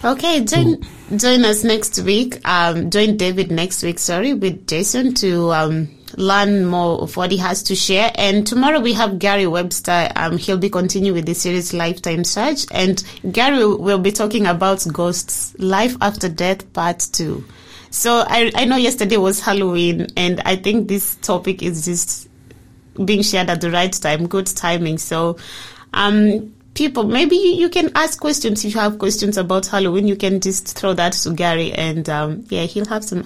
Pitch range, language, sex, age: 175-215 Hz, English, female, 20-39